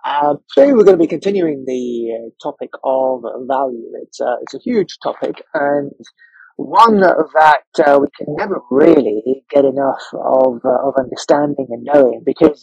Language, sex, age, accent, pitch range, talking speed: English, male, 30-49, British, 135-195 Hz, 165 wpm